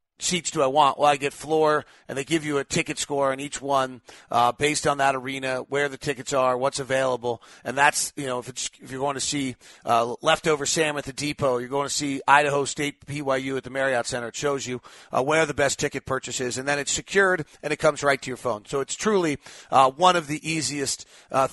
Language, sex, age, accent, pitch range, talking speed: English, male, 40-59, American, 130-155 Hz, 245 wpm